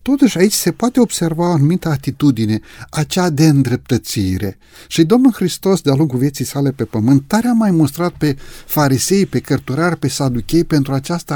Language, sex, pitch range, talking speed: Romanian, male, 130-190 Hz, 170 wpm